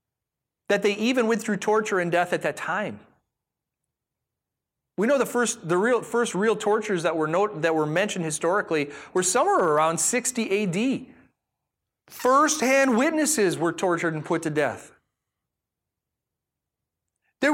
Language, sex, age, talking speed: English, male, 30-49, 140 wpm